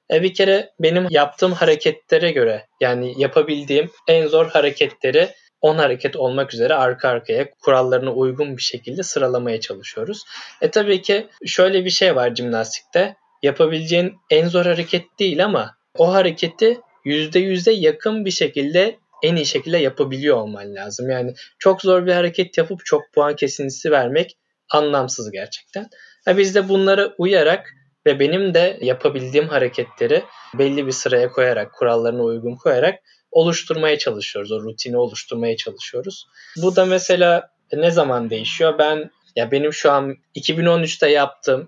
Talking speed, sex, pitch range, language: 140 wpm, male, 130-195 Hz, Turkish